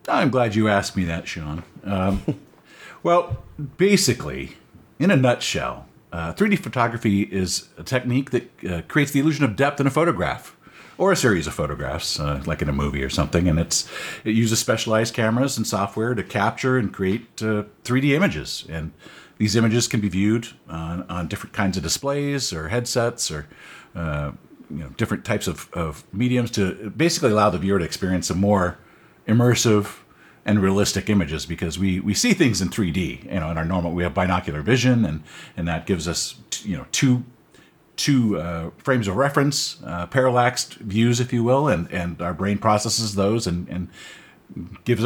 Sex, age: male, 50-69